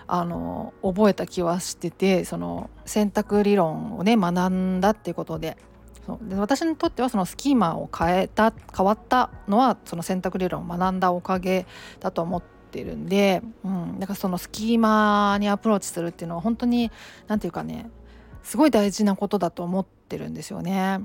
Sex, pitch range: female, 185-235 Hz